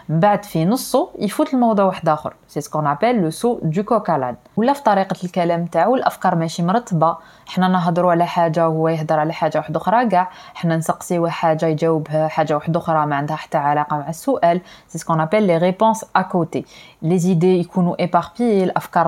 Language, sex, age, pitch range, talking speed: Arabic, female, 20-39, 160-215 Hz, 160 wpm